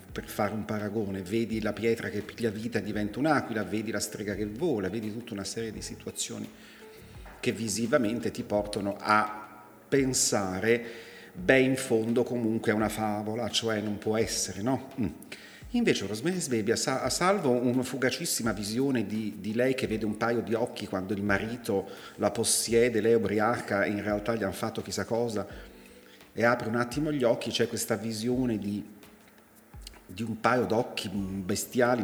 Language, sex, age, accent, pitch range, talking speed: Italian, male, 40-59, native, 100-120 Hz, 165 wpm